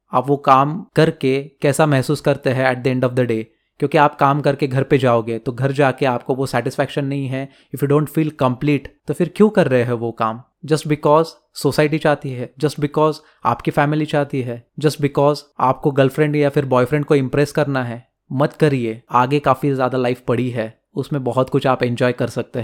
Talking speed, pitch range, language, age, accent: 210 wpm, 125-150 Hz, Hindi, 20-39, native